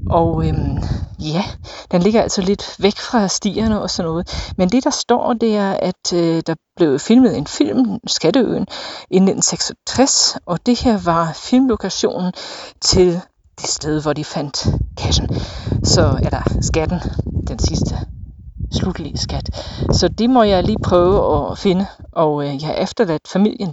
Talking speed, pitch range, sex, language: 160 wpm, 150-215 Hz, female, Danish